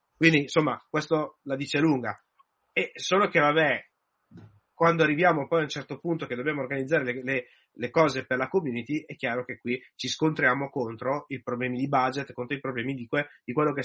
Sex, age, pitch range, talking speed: male, 30-49, 135-175 Hz, 200 wpm